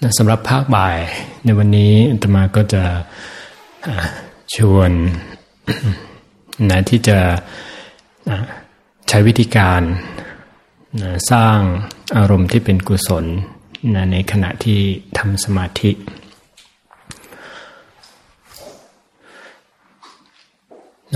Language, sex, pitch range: Thai, male, 95-110 Hz